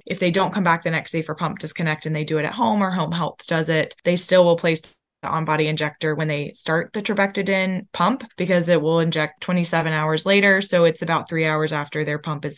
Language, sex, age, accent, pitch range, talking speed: English, female, 20-39, American, 155-180 Hz, 245 wpm